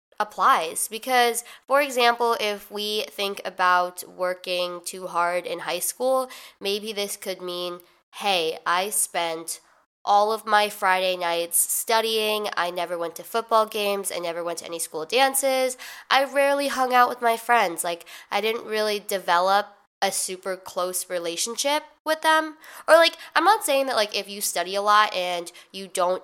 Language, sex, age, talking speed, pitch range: English, female, 20-39, 165 wpm, 180-230 Hz